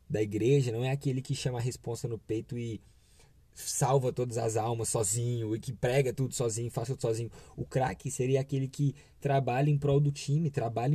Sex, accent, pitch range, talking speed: male, Brazilian, 115-140 Hz, 195 wpm